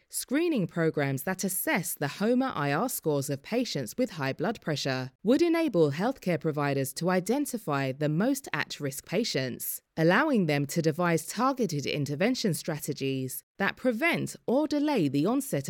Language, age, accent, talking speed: English, 20-39, British, 145 wpm